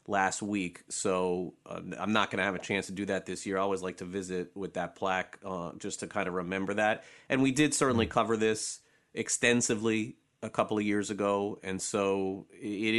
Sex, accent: male, American